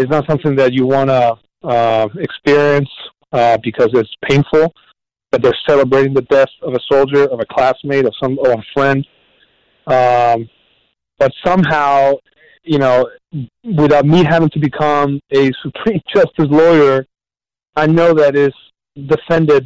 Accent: American